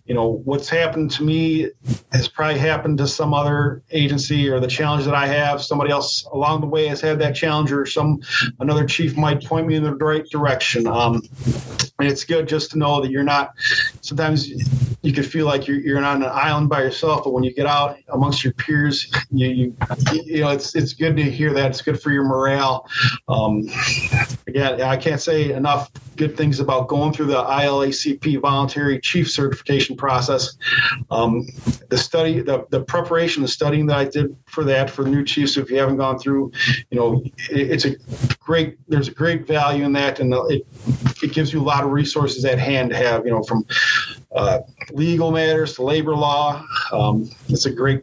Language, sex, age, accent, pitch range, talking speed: English, male, 40-59, American, 130-150 Hz, 200 wpm